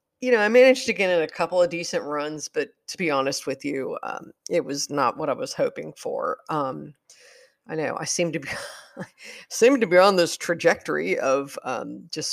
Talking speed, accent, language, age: 215 wpm, American, English, 50-69